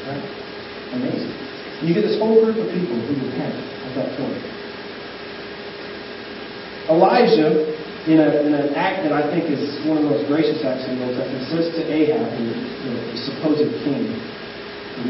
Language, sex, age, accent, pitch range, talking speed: English, male, 40-59, American, 140-160 Hz, 165 wpm